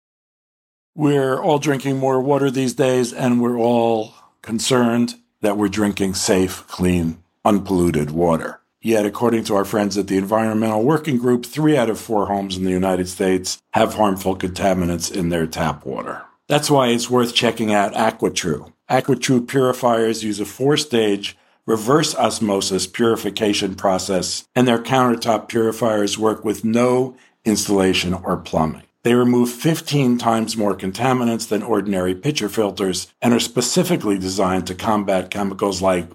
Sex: male